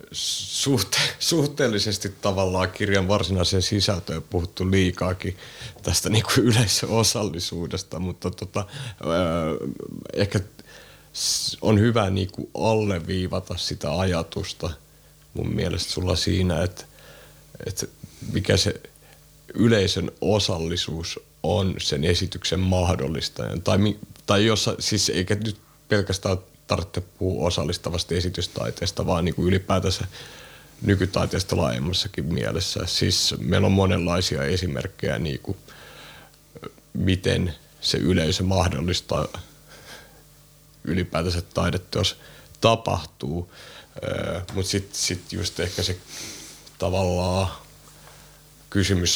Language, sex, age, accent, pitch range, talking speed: Finnish, male, 30-49, native, 85-100 Hz, 95 wpm